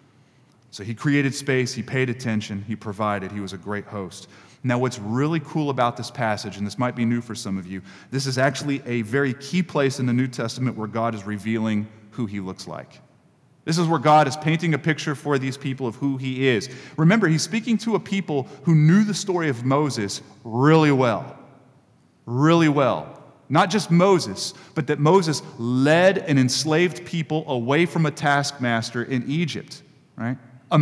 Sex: male